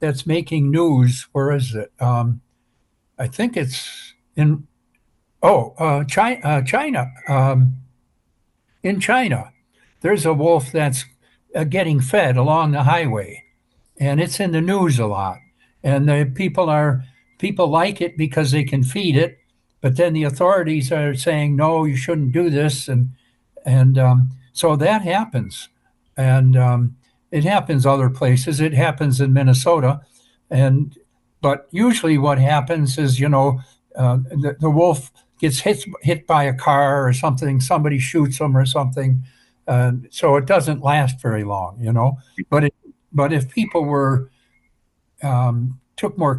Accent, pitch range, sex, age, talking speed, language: American, 130-155 Hz, male, 60-79, 155 wpm, English